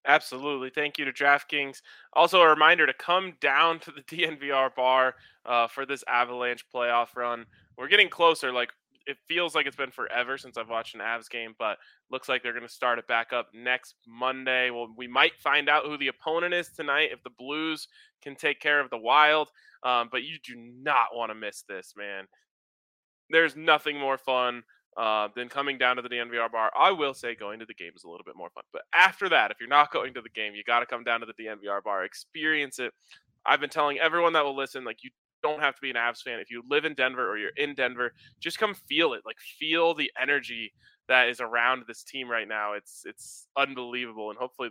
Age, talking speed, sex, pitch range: 20-39, 225 wpm, male, 115-145 Hz